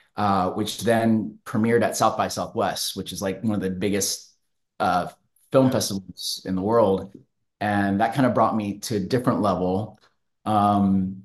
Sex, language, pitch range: male, English, 95-115 Hz